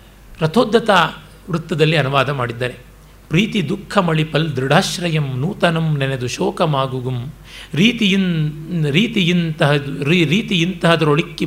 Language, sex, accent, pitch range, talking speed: Kannada, male, native, 145-195 Hz, 85 wpm